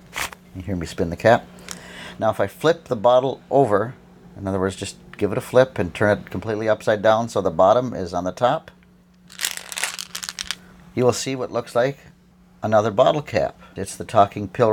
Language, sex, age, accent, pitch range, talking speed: English, male, 50-69, American, 100-130 Hz, 190 wpm